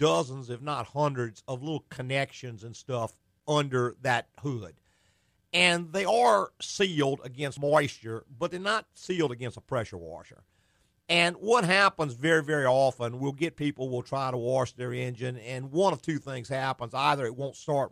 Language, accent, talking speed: English, American, 170 wpm